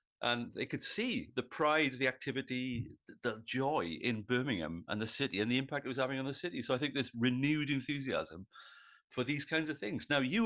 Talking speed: 210 wpm